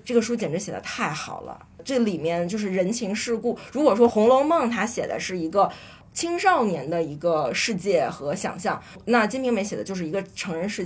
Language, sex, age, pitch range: Chinese, female, 20-39, 180-240 Hz